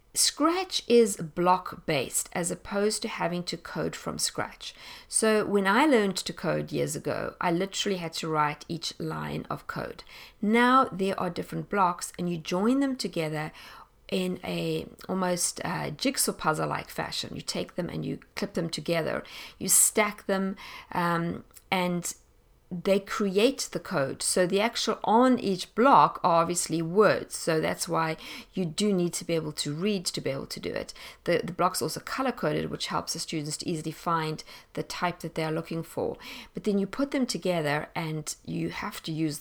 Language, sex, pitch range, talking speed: English, female, 160-200 Hz, 180 wpm